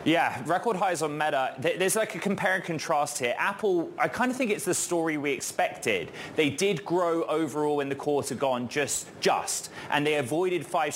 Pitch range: 135-175 Hz